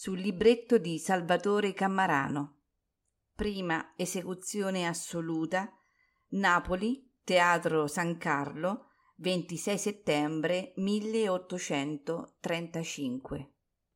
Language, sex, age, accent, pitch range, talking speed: Italian, female, 40-59, native, 165-215 Hz, 65 wpm